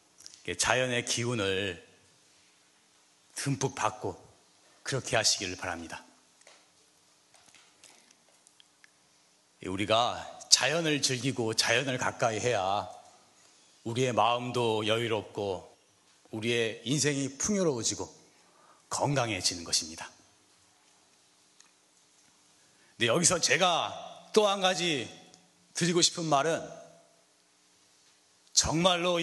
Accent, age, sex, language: native, 40-59, male, Korean